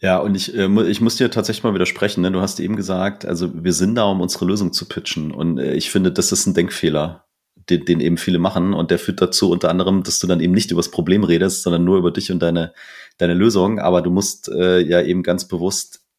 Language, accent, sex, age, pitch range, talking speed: German, German, male, 30-49, 85-95 Hz, 240 wpm